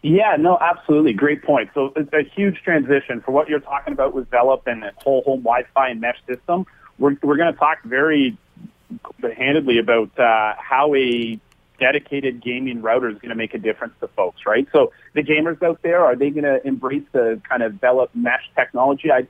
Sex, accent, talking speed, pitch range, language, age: male, American, 200 wpm, 120-150 Hz, English, 40-59